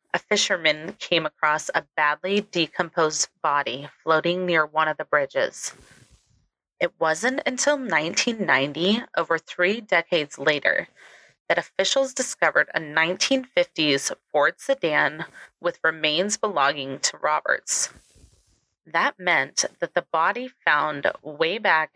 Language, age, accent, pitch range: English, 30-49, American, 155-205 Hz